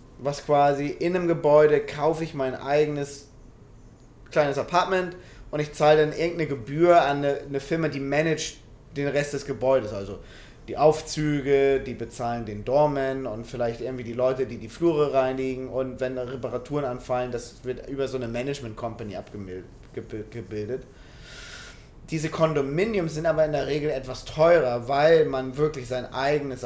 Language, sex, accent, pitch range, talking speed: German, male, German, 125-155 Hz, 155 wpm